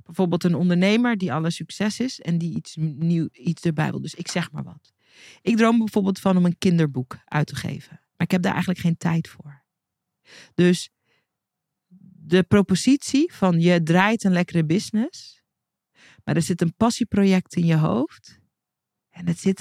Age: 40-59